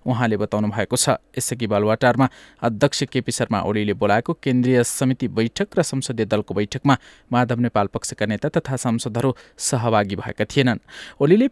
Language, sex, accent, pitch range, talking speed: English, male, Indian, 115-140 Hz, 140 wpm